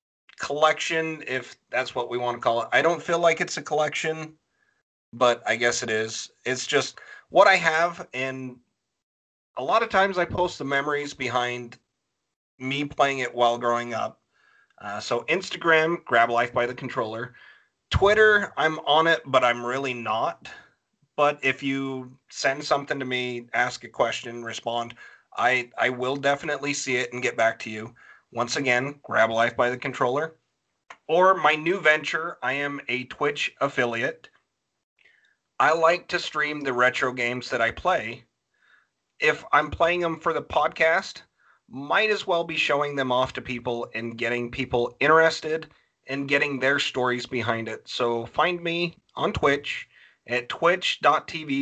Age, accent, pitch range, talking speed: 30-49, American, 120-155 Hz, 160 wpm